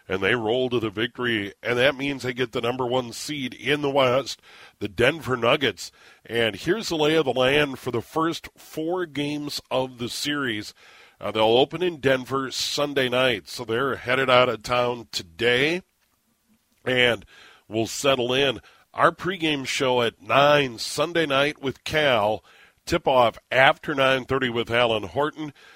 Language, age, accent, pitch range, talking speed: English, 50-69, American, 120-145 Hz, 160 wpm